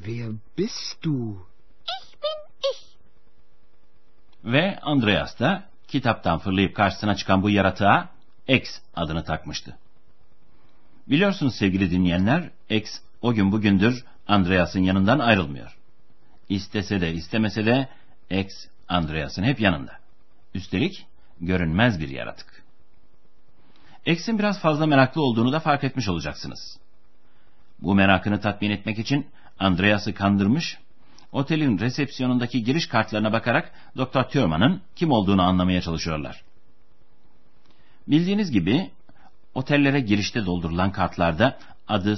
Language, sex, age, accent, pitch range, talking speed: Turkish, male, 60-79, native, 90-130 Hz, 95 wpm